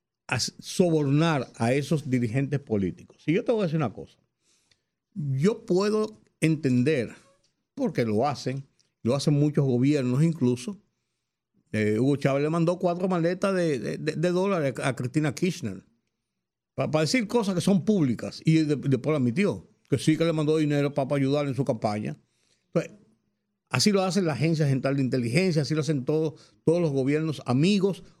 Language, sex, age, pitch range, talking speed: Spanish, male, 50-69, 130-170 Hz, 170 wpm